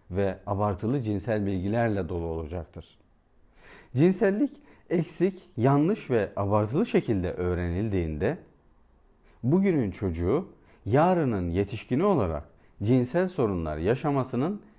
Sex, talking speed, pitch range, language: male, 85 wpm, 95-155 Hz, Turkish